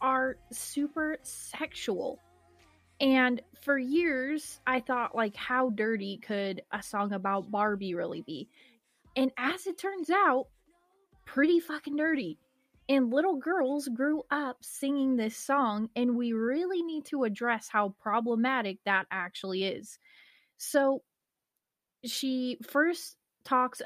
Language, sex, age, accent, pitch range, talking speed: English, female, 20-39, American, 210-265 Hz, 125 wpm